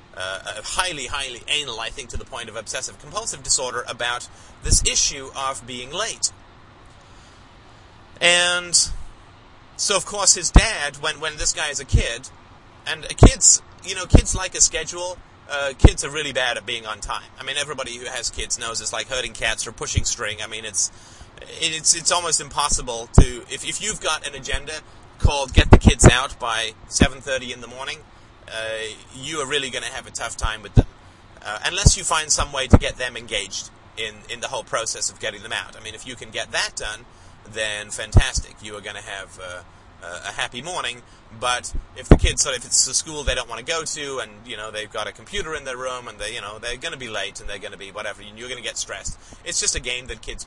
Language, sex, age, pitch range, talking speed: English, male, 30-49, 105-135 Hz, 225 wpm